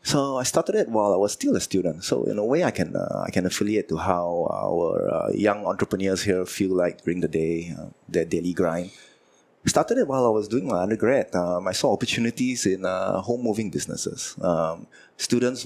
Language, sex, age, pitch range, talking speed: English, male, 20-39, 90-110 Hz, 210 wpm